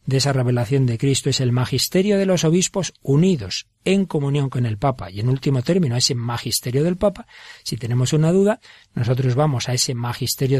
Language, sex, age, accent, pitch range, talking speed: Spanish, male, 40-59, Spanish, 125-165 Hz, 195 wpm